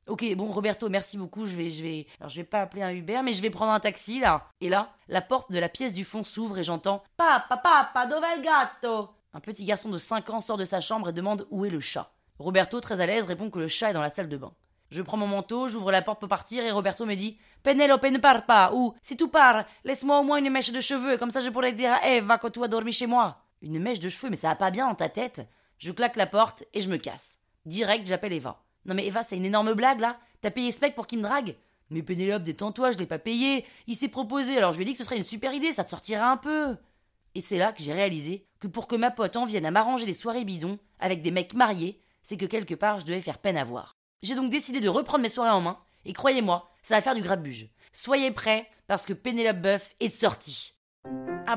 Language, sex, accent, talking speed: French, female, French, 270 wpm